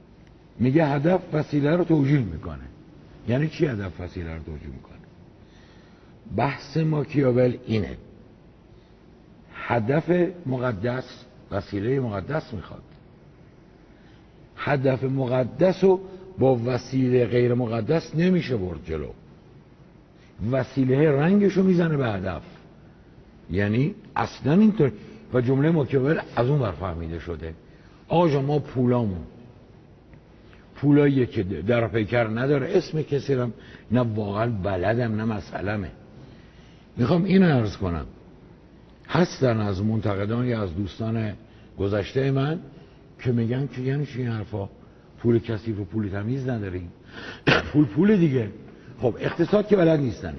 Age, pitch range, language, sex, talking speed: 60-79, 105-145 Hz, Persian, male, 115 wpm